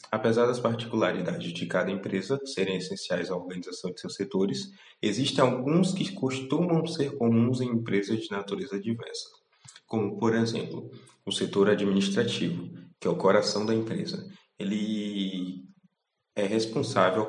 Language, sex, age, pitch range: Portuguese, male, 20-39, 100-115 Hz